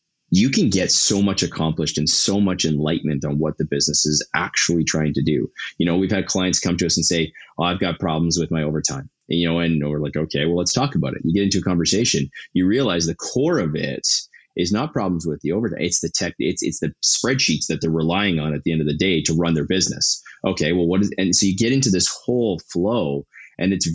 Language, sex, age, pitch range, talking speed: English, male, 20-39, 80-95 Hz, 250 wpm